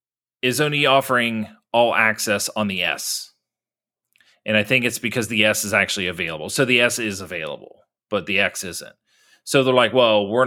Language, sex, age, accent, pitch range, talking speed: English, male, 30-49, American, 105-125 Hz, 185 wpm